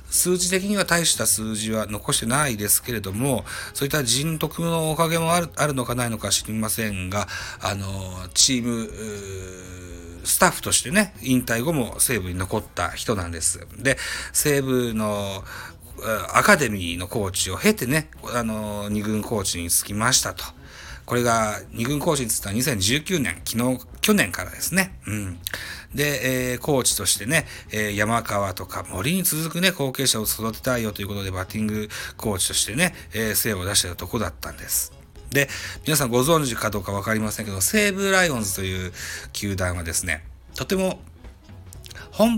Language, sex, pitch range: Japanese, male, 95-125 Hz